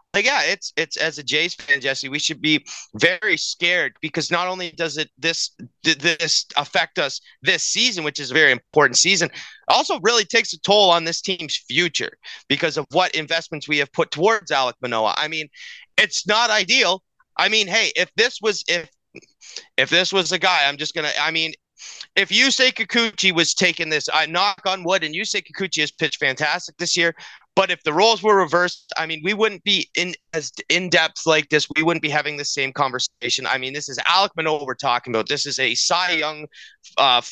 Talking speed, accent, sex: 210 wpm, American, male